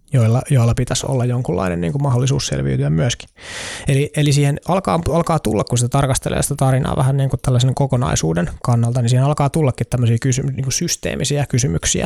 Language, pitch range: Finnish, 115-140 Hz